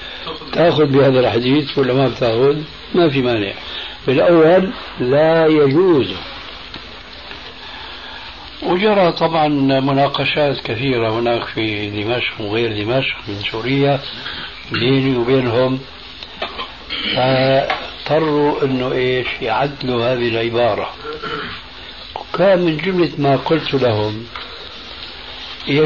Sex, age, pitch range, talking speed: male, 60-79, 125-155 Hz, 90 wpm